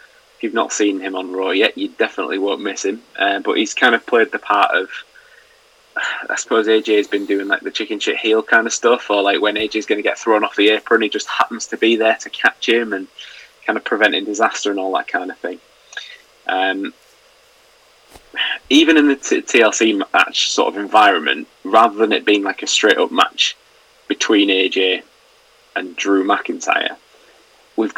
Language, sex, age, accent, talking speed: English, male, 20-39, British, 195 wpm